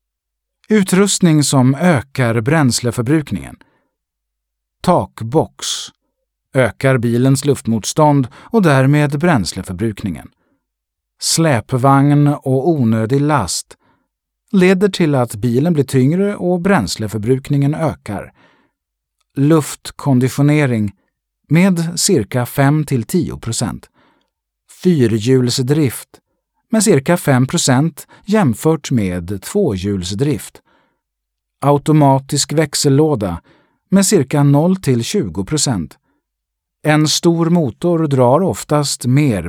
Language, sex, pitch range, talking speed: Swedish, male, 110-160 Hz, 75 wpm